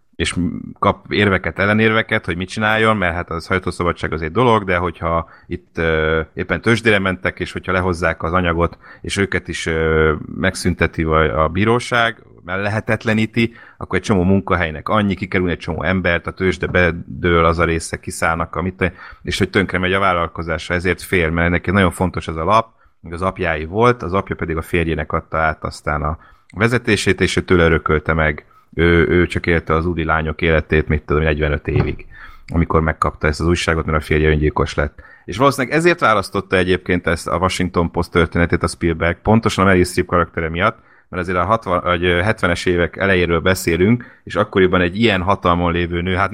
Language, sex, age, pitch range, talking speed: Hungarian, male, 30-49, 85-100 Hz, 175 wpm